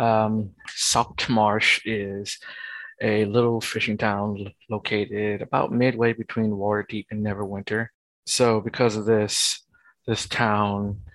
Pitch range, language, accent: 105-115 Hz, English, American